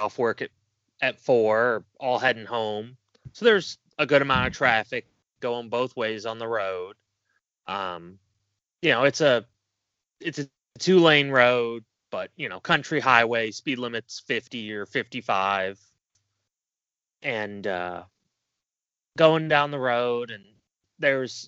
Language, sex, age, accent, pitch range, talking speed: English, male, 30-49, American, 105-145 Hz, 135 wpm